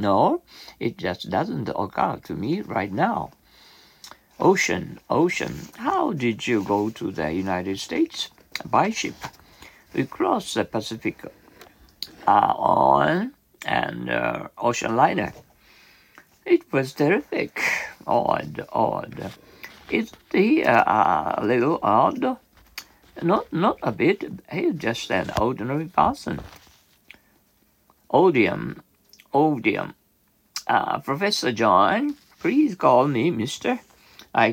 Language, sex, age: Japanese, male, 60-79